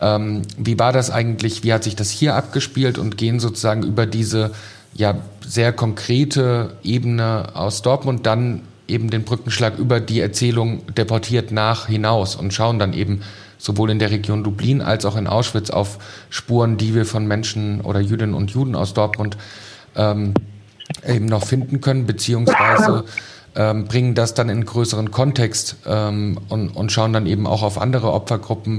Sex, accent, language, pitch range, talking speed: male, German, German, 105-115 Hz, 165 wpm